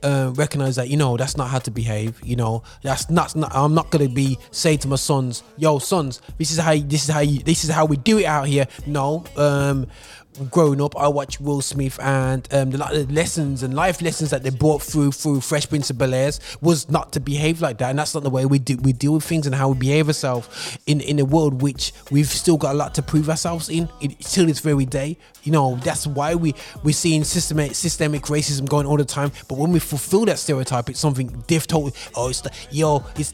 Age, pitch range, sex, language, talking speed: 20-39, 135-160 Hz, male, English, 240 wpm